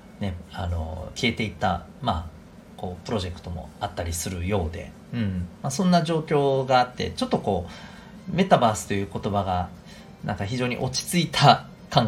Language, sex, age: Japanese, male, 40-59